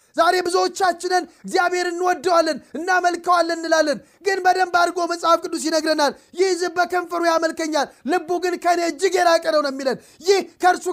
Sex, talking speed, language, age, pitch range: male, 135 wpm, Amharic, 30-49, 275-355 Hz